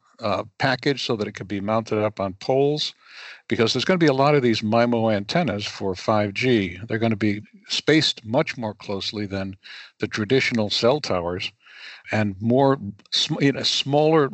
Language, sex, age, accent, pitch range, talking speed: English, male, 60-79, American, 105-130 Hz, 175 wpm